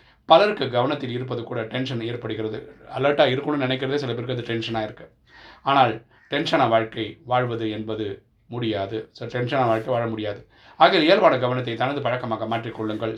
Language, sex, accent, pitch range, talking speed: Tamil, male, native, 110-125 Hz, 135 wpm